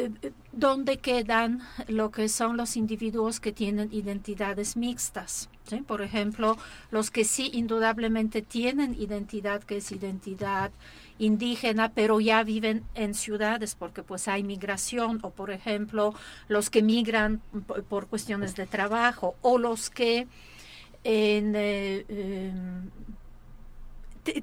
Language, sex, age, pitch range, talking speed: Spanish, female, 50-69, 205-235 Hz, 115 wpm